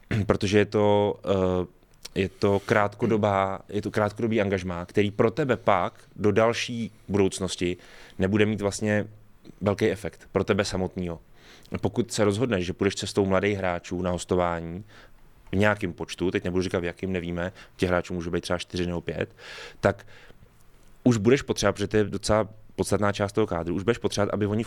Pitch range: 95-110 Hz